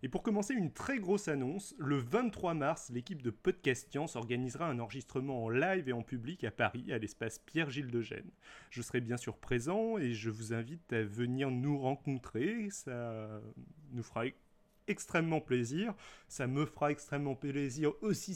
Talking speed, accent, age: 175 wpm, French, 30-49